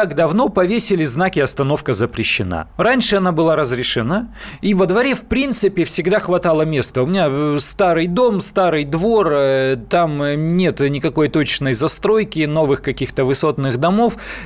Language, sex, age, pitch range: Russian, male, 30-49, 135-195 Hz